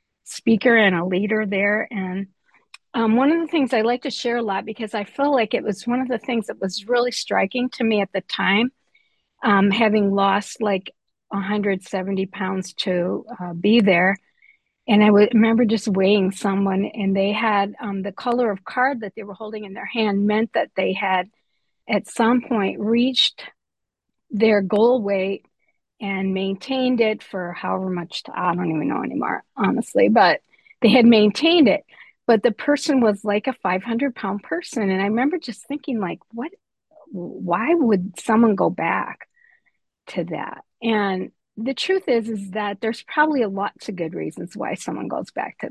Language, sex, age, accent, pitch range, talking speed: English, female, 50-69, American, 195-240 Hz, 175 wpm